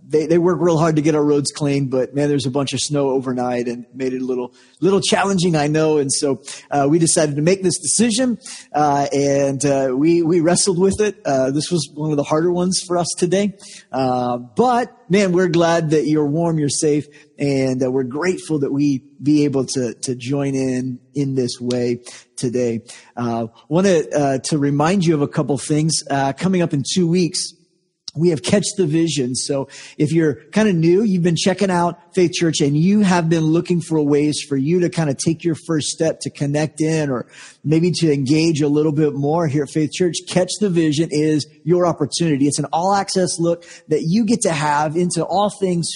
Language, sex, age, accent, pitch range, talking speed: English, male, 40-59, American, 140-175 Hz, 215 wpm